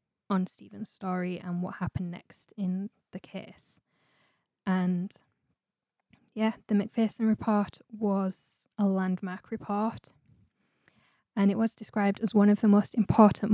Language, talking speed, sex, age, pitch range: English, 130 wpm, female, 20-39, 190-225 Hz